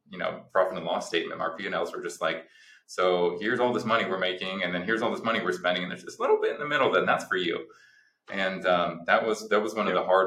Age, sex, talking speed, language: 20-39, male, 280 wpm, English